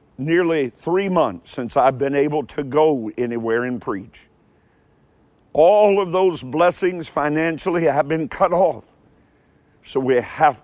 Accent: American